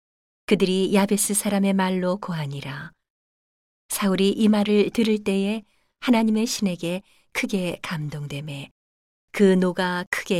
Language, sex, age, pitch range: Korean, female, 40-59, 175-215 Hz